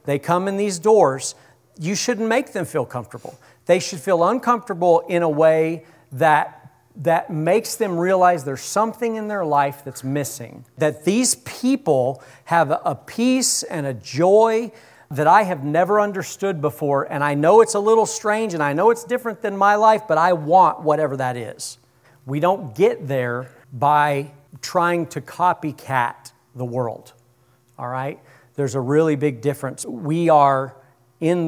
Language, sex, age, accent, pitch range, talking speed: English, male, 40-59, American, 130-170 Hz, 165 wpm